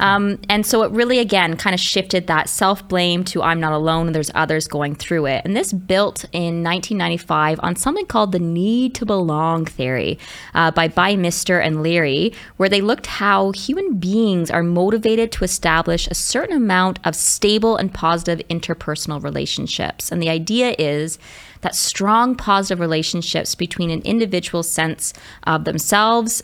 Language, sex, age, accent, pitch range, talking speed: English, female, 20-39, American, 165-200 Hz, 165 wpm